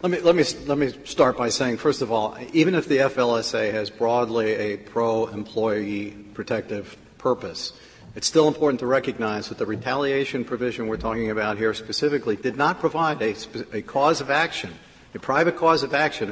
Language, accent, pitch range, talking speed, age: English, American, 115-150 Hz, 180 wpm, 50-69